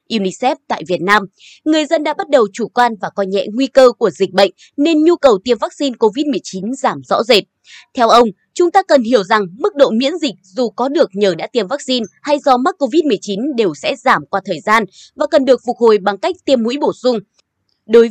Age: 20-39